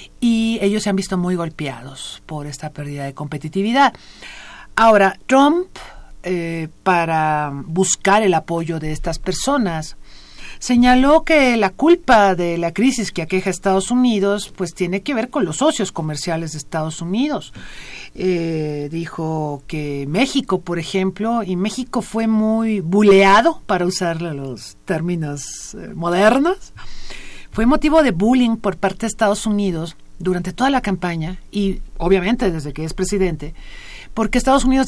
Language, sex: Spanish, female